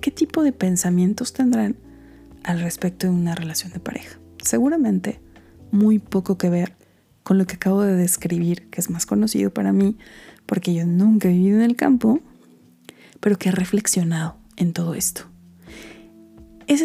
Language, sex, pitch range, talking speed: Spanish, female, 170-210 Hz, 160 wpm